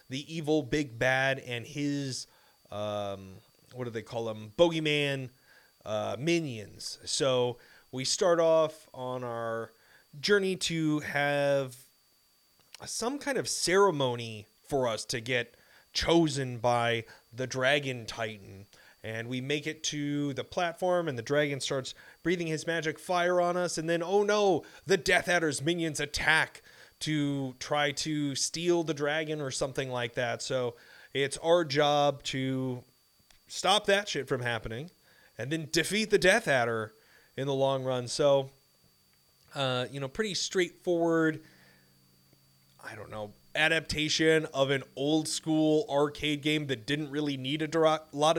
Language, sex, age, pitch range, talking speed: English, male, 30-49, 125-165 Hz, 145 wpm